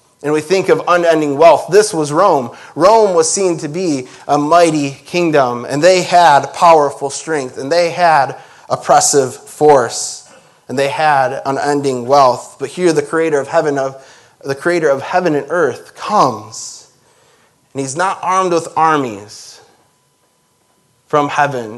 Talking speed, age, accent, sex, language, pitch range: 150 wpm, 20-39, American, male, English, 125-150 Hz